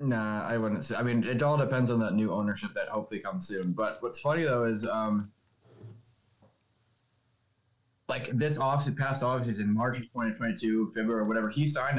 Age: 20-39